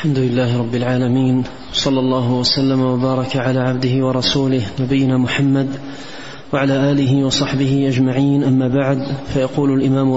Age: 30-49